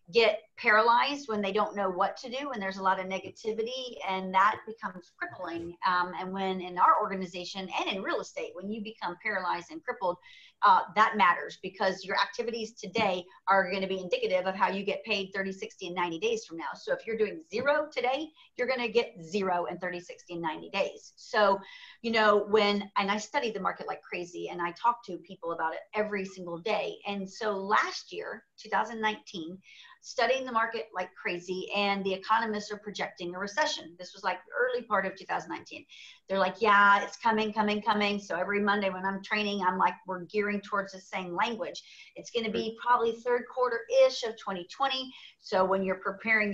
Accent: American